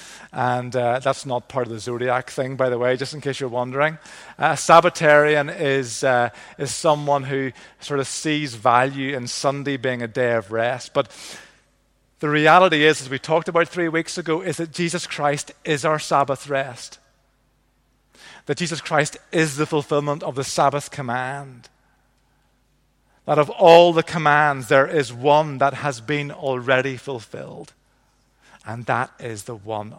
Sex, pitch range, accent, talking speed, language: male, 125-150 Hz, British, 165 wpm, English